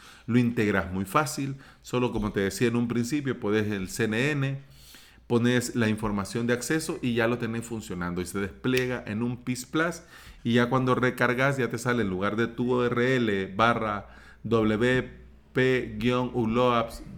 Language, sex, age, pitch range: Spanish, male, 40-59, 115-140 Hz